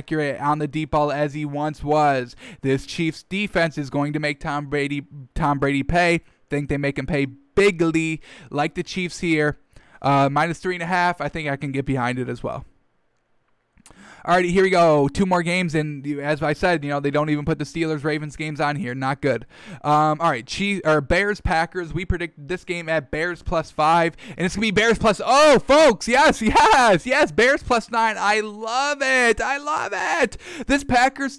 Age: 10-29